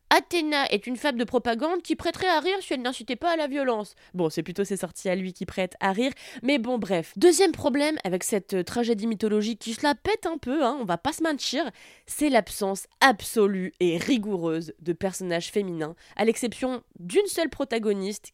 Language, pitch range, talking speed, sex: French, 195-275 Hz, 205 wpm, female